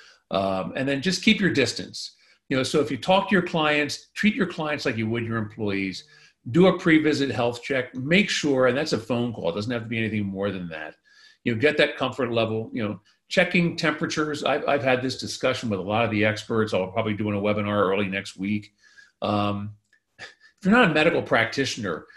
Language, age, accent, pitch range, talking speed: English, 50-69, American, 105-145 Hz, 220 wpm